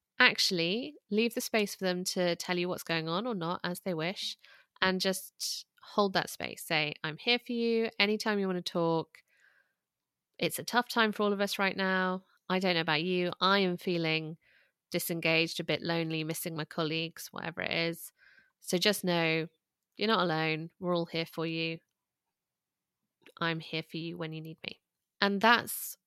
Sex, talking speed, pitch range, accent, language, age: female, 185 wpm, 170-210 Hz, British, English, 20-39